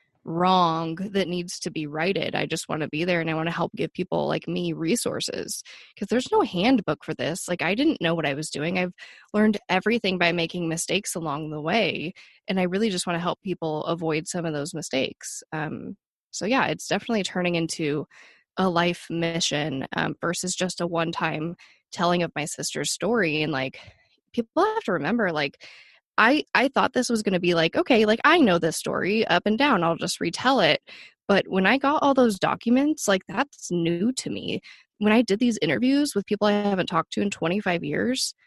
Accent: American